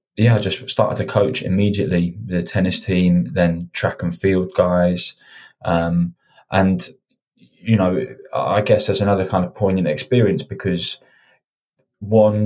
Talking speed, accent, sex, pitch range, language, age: 140 wpm, British, male, 90-100 Hz, English, 20-39